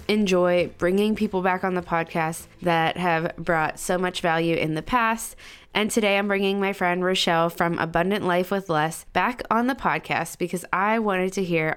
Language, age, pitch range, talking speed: English, 20-39, 170-200 Hz, 190 wpm